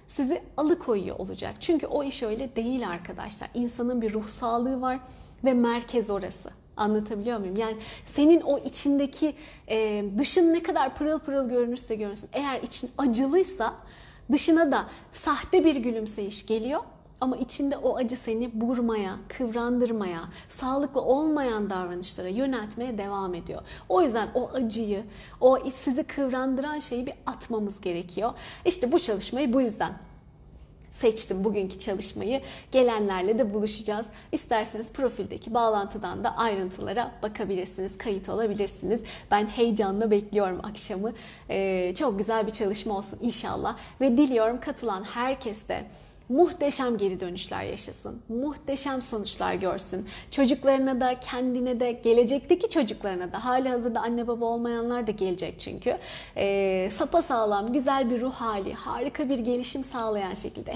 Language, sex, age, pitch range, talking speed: Turkish, female, 30-49, 210-265 Hz, 130 wpm